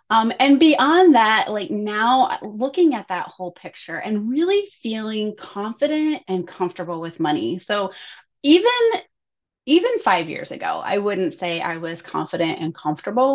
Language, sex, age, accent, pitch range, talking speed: English, female, 30-49, American, 180-260 Hz, 150 wpm